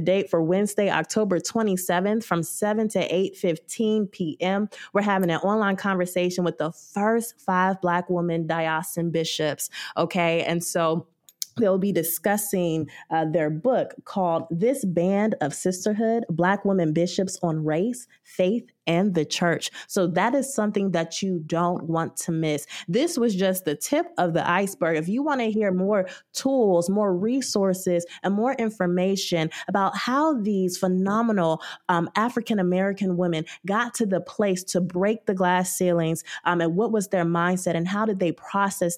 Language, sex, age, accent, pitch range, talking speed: English, female, 20-39, American, 170-210 Hz, 160 wpm